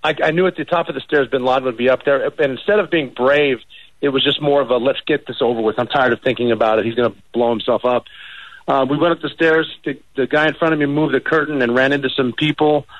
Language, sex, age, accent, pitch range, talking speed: English, male, 40-59, American, 120-145 Hz, 295 wpm